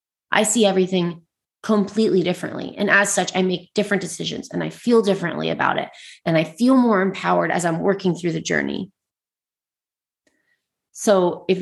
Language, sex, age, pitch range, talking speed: English, female, 30-49, 160-195 Hz, 160 wpm